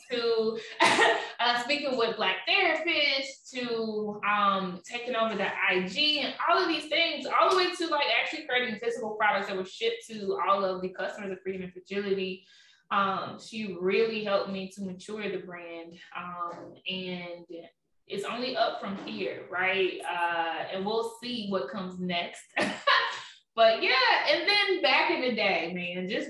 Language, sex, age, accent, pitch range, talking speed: English, female, 20-39, American, 185-240 Hz, 165 wpm